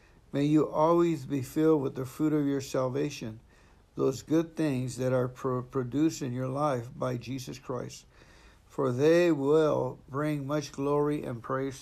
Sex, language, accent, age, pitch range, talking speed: male, English, American, 60-79, 125-150 Hz, 155 wpm